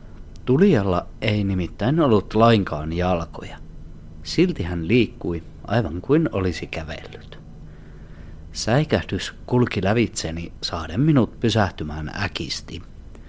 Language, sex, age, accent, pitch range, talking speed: Finnish, male, 40-59, native, 80-115 Hz, 90 wpm